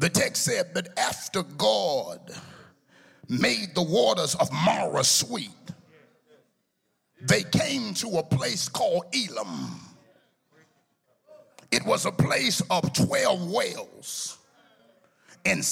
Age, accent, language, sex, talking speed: 50-69, American, English, male, 105 wpm